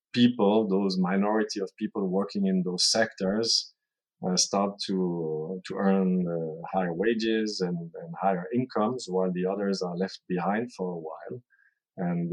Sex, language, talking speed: male, English, 150 wpm